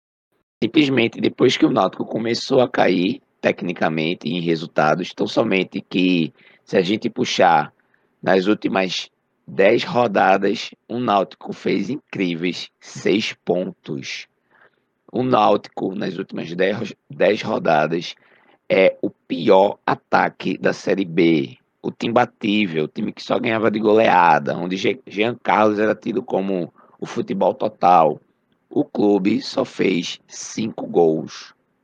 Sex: male